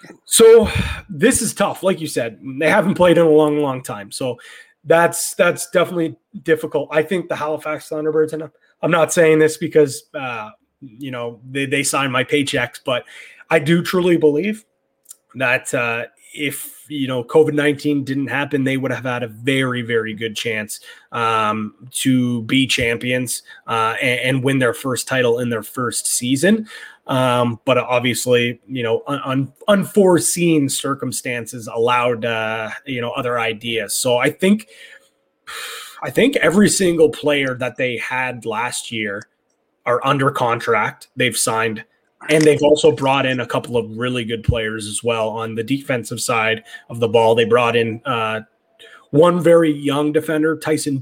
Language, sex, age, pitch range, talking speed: English, male, 30-49, 120-155 Hz, 160 wpm